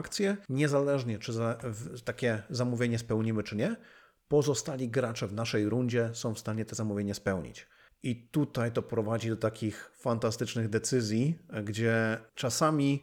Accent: native